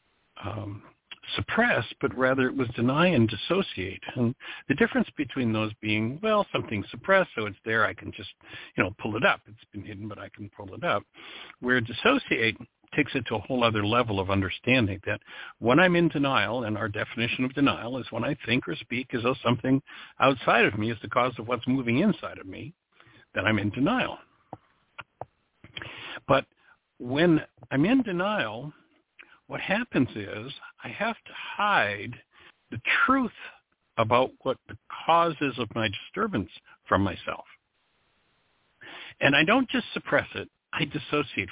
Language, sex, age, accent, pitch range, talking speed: English, male, 60-79, American, 110-155 Hz, 170 wpm